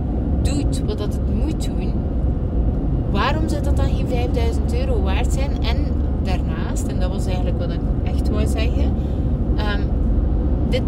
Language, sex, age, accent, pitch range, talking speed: Dutch, female, 30-49, Dutch, 70-85 Hz, 150 wpm